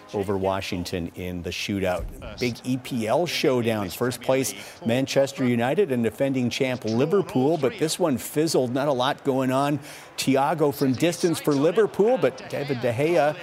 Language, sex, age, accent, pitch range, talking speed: English, male, 50-69, American, 120-150 Hz, 150 wpm